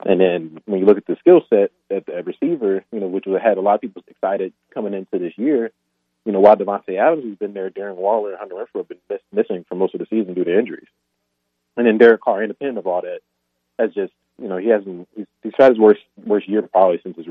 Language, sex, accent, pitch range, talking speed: English, male, American, 90-115 Hz, 265 wpm